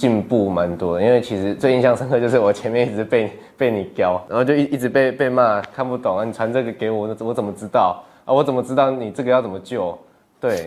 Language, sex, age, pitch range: Chinese, male, 20-39, 95-130 Hz